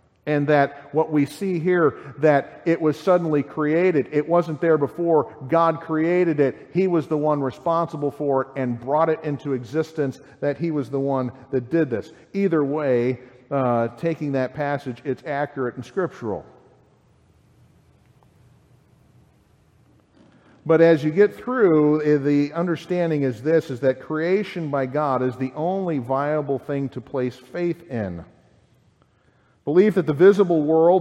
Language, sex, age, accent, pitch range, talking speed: English, male, 50-69, American, 140-175 Hz, 145 wpm